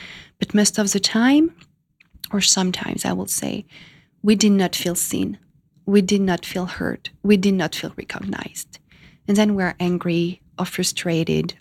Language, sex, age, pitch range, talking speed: English, female, 30-49, 180-215 Hz, 160 wpm